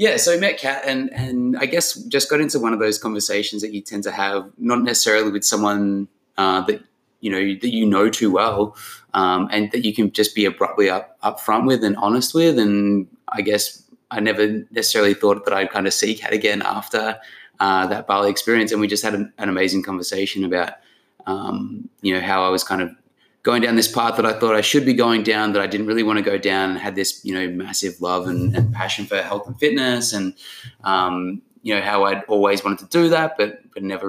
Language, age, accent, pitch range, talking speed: English, 20-39, Australian, 95-120 Hz, 235 wpm